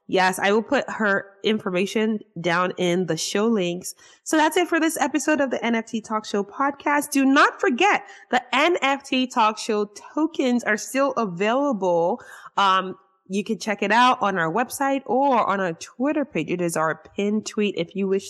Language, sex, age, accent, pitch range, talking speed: English, female, 20-39, American, 185-255 Hz, 185 wpm